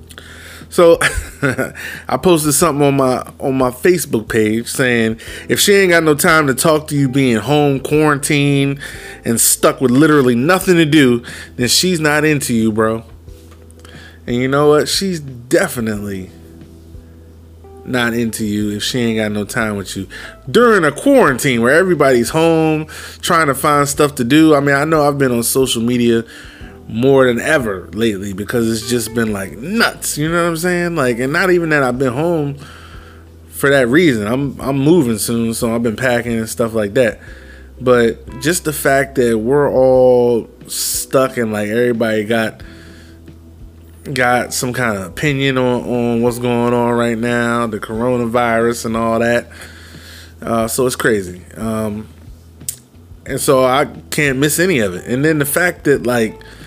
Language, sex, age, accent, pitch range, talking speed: English, male, 20-39, American, 110-140 Hz, 170 wpm